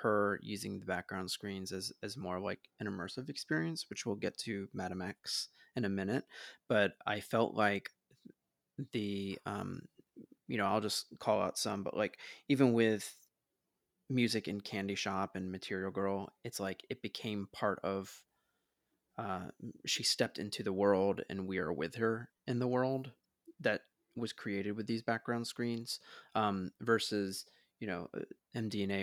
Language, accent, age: English, American, 20-39